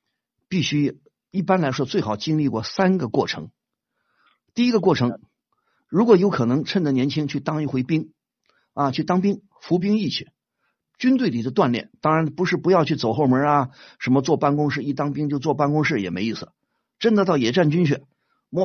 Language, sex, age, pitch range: Chinese, male, 50-69, 130-180 Hz